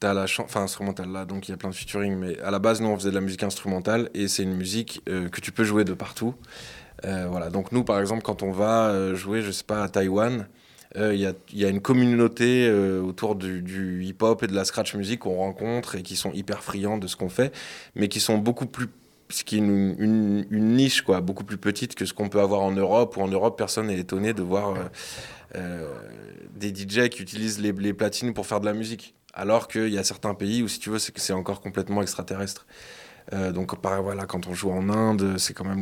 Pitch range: 95-110 Hz